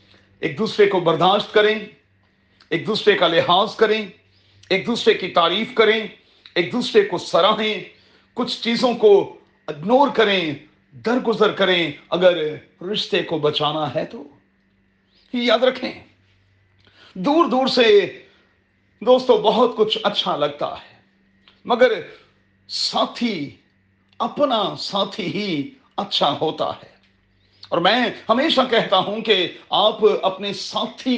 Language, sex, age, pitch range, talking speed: Urdu, male, 40-59, 150-225 Hz, 115 wpm